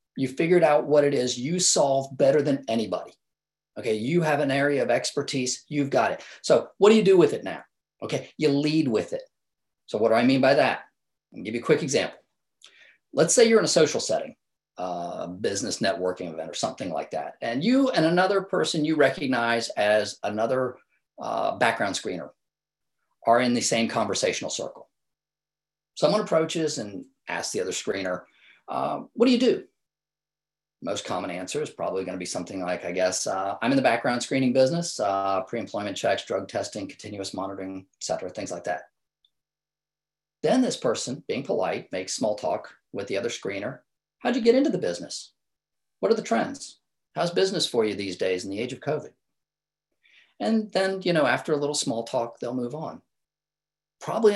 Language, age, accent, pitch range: English, 40-59, American, 120-195 Hz